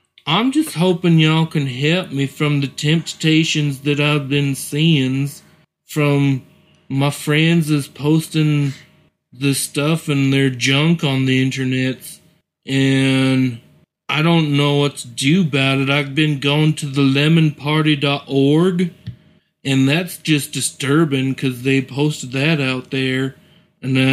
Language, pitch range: English, 140-160 Hz